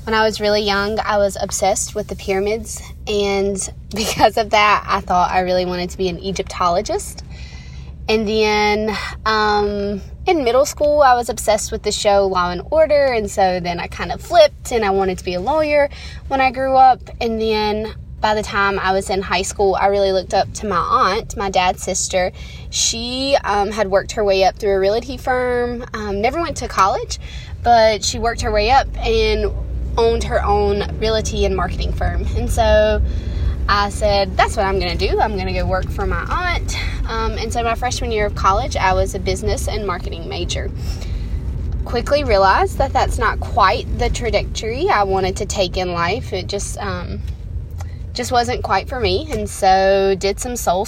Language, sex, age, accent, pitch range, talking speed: English, female, 20-39, American, 180-220 Hz, 195 wpm